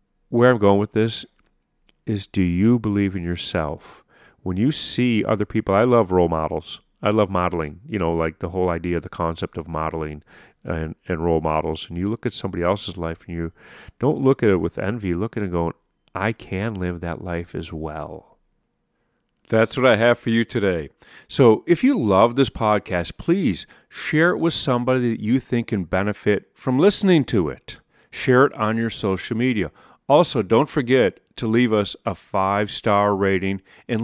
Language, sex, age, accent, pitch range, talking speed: English, male, 40-59, American, 95-125 Hz, 190 wpm